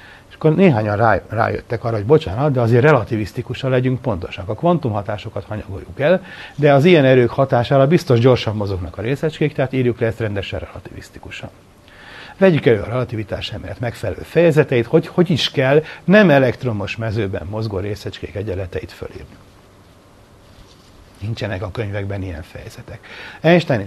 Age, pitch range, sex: 60-79, 100-130 Hz, male